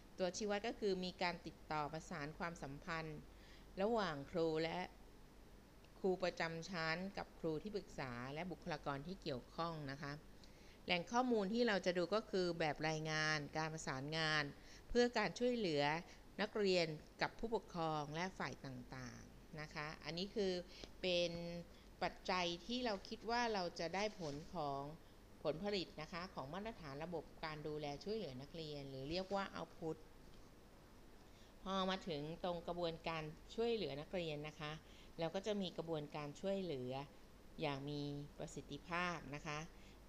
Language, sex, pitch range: Thai, female, 150-185 Hz